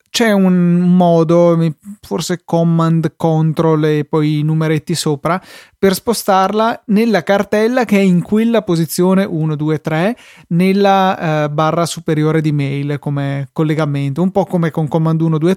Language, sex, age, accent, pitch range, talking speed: Italian, male, 20-39, native, 155-185 Hz, 145 wpm